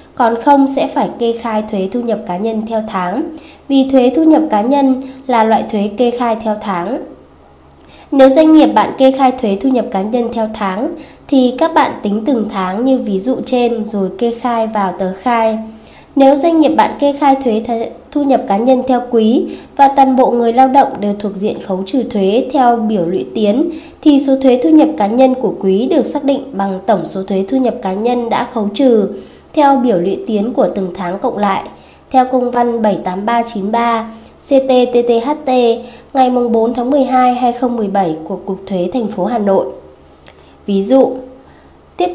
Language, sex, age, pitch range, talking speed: Vietnamese, female, 20-39, 210-265 Hz, 195 wpm